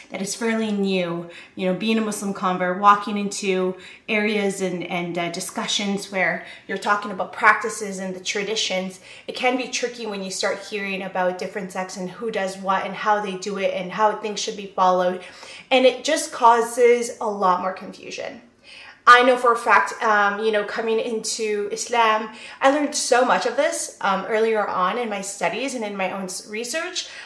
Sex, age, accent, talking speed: female, 30-49, American, 190 wpm